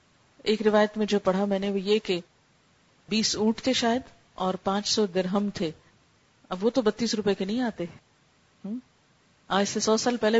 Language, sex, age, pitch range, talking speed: Urdu, female, 40-59, 185-240 Hz, 180 wpm